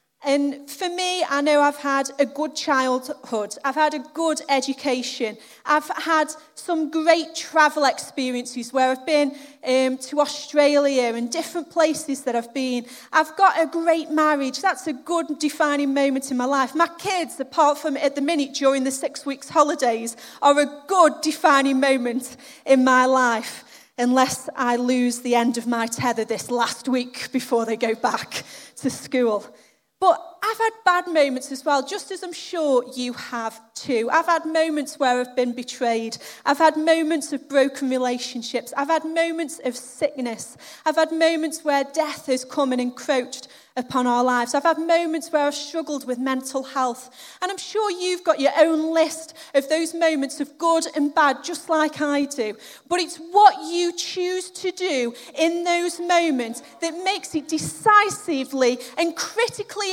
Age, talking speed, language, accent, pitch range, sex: 30-49, 170 wpm, English, British, 260-330 Hz, female